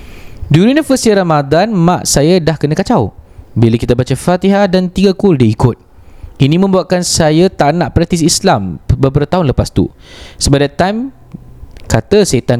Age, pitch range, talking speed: 20-39, 115-180 Hz, 170 wpm